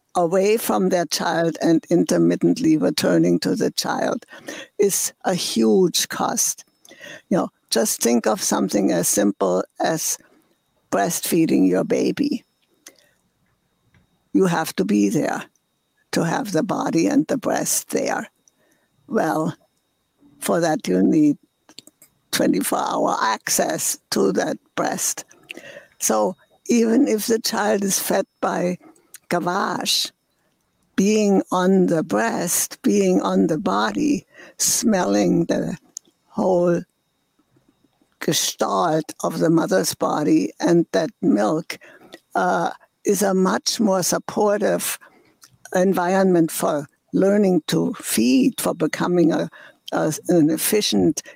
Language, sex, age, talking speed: English, female, 60-79, 105 wpm